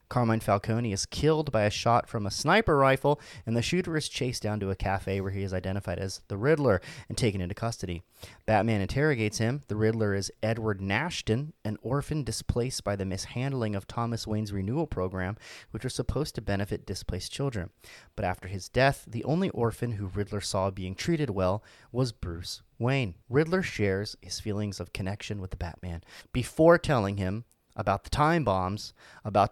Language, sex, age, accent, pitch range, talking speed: English, male, 30-49, American, 95-125 Hz, 185 wpm